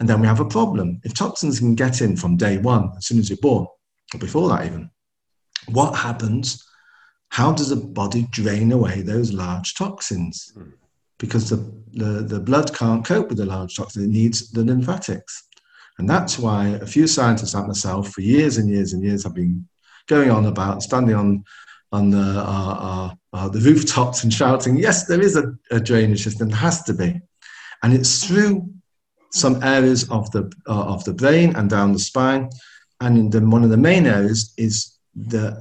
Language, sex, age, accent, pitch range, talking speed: English, male, 50-69, British, 100-130 Hz, 190 wpm